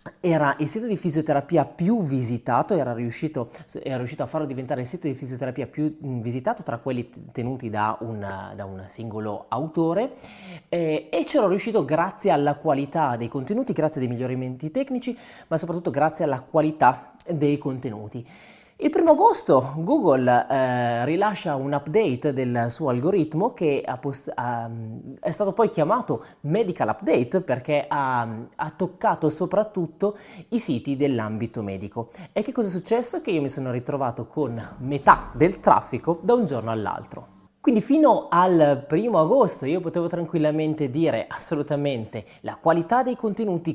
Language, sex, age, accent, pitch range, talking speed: Italian, male, 30-49, native, 125-185 Hz, 145 wpm